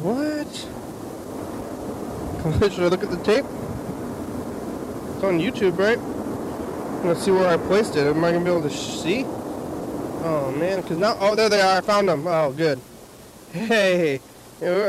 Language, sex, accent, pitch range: English, male, American, 160-195 Hz